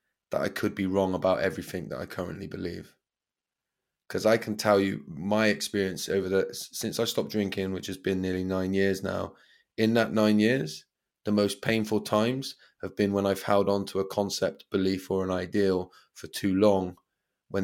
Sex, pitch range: male, 95-105 Hz